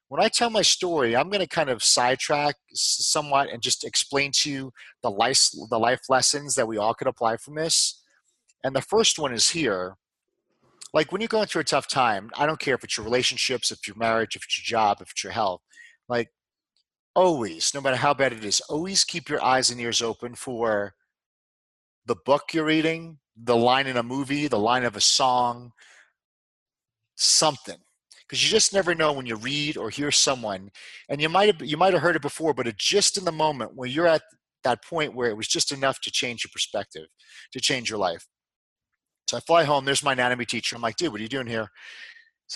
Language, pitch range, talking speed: English, 120-155 Hz, 215 wpm